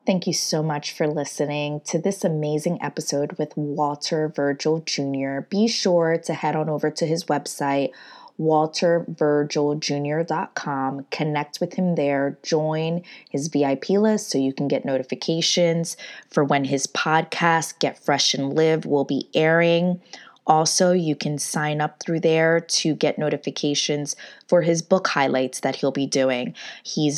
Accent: American